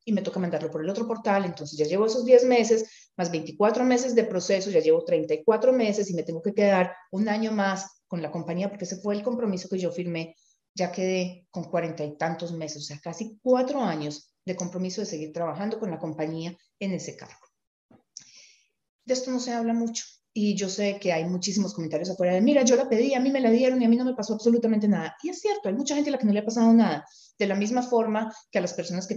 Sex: female